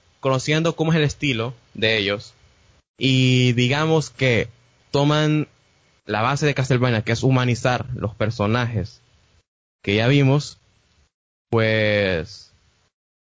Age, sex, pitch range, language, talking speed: 20-39, male, 110-135 Hz, Spanish, 110 wpm